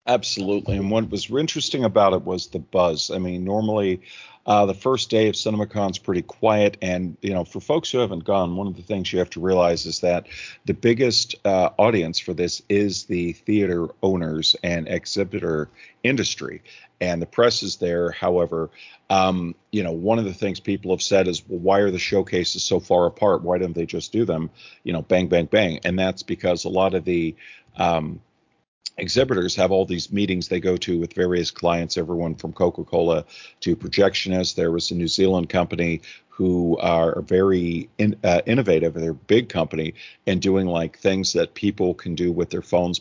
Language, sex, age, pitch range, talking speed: English, male, 40-59, 85-95 Hz, 195 wpm